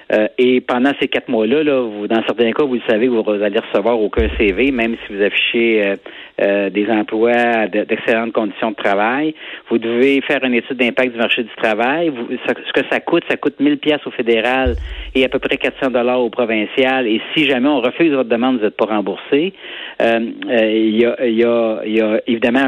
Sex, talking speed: male, 210 wpm